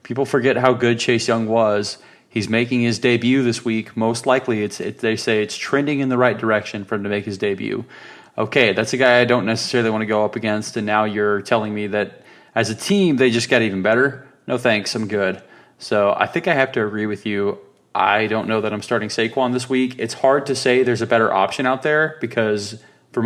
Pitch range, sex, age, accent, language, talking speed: 110-125 Hz, male, 30-49, American, English, 235 wpm